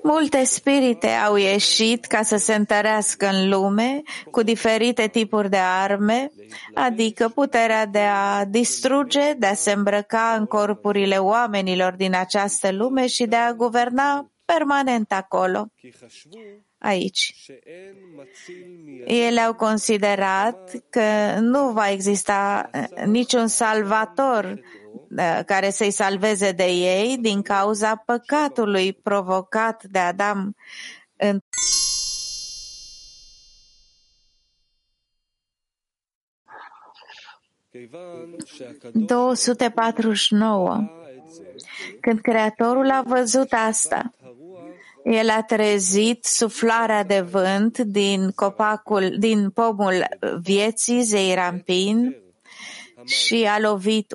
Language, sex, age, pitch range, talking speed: English, female, 30-49, 195-230 Hz, 85 wpm